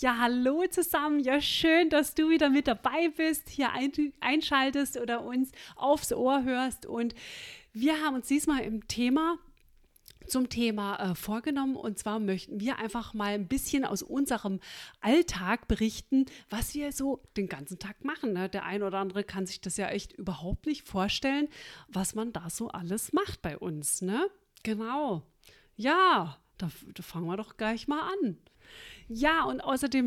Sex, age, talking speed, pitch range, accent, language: female, 40-59, 170 wpm, 205-280 Hz, German, German